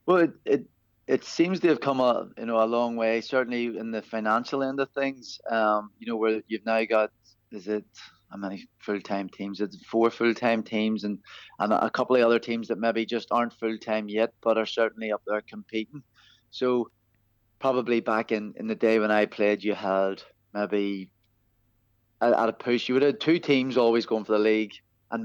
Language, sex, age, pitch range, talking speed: English, male, 20-39, 105-120 Hz, 205 wpm